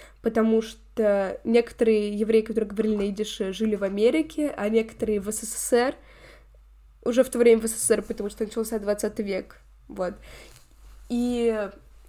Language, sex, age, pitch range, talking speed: Russian, female, 10-29, 210-245 Hz, 140 wpm